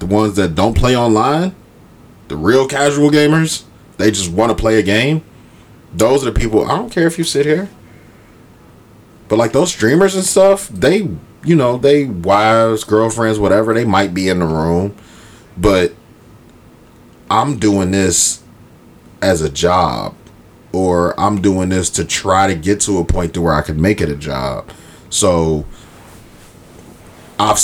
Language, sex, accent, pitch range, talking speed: English, male, American, 90-110 Hz, 165 wpm